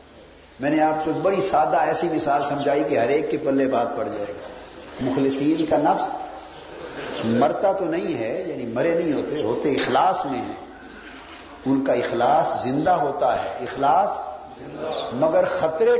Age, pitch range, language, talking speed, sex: 50-69, 140-180 Hz, Urdu, 160 wpm, male